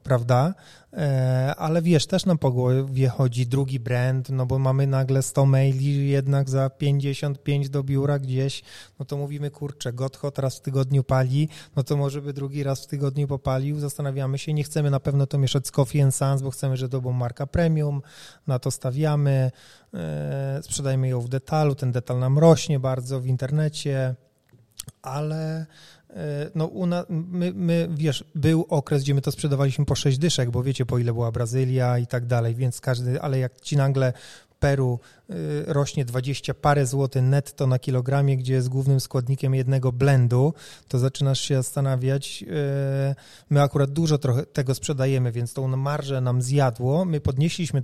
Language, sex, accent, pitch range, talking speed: Polish, male, native, 130-145 Hz, 165 wpm